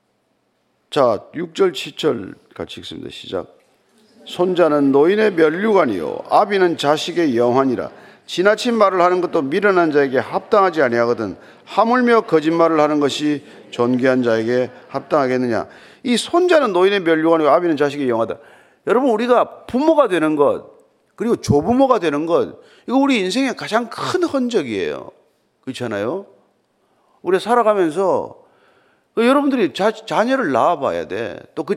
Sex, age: male, 40-59